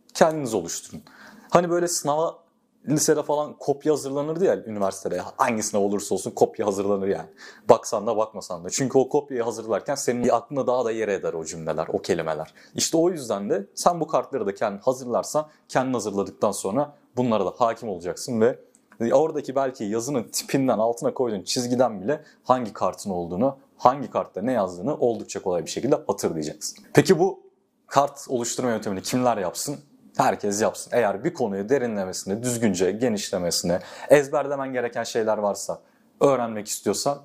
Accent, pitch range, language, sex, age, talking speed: native, 110-150 Hz, Turkish, male, 30-49, 150 wpm